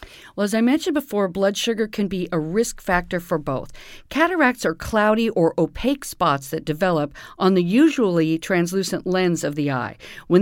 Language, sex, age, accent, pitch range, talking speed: English, female, 50-69, American, 165-220 Hz, 180 wpm